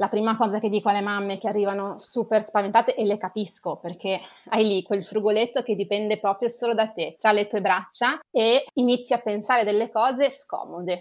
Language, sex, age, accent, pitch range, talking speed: Italian, female, 20-39, native, 190-230 Hz, 195 wpm